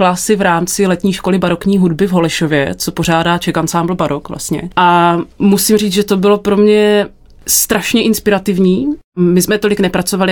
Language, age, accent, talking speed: Czech, 30-49, native, 165 wpm